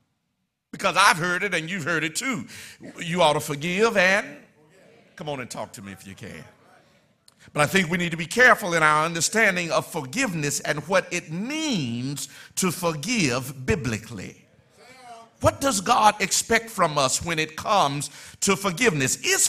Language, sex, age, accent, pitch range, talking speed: English, male, 50-69, American, 155-220 Hz, 170 wpm